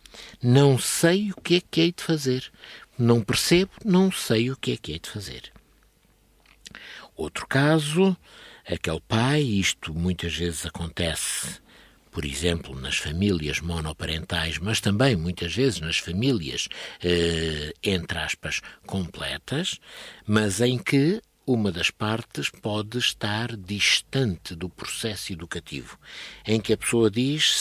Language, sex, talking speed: Portuguese, male, 130 wpm